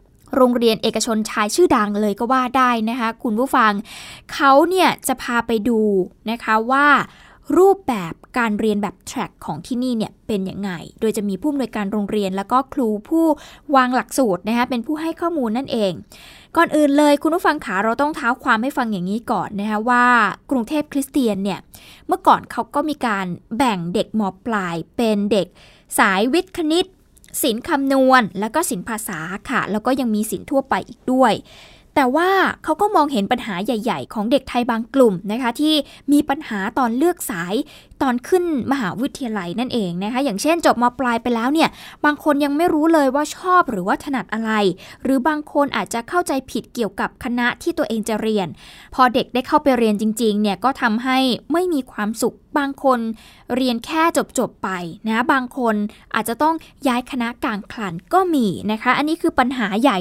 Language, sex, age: Thai, female, 20-39